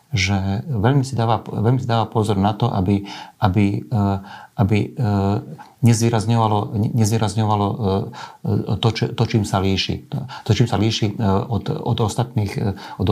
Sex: male